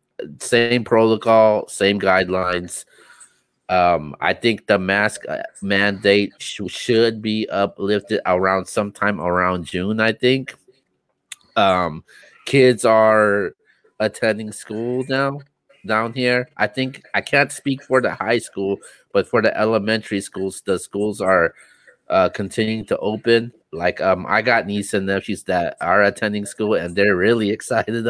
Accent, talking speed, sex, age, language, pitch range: American, 135 wpm, male, 30-49, English, 95-115 Hz